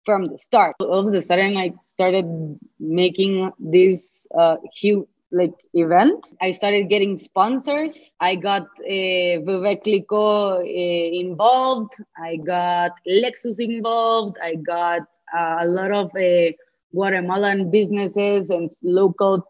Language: English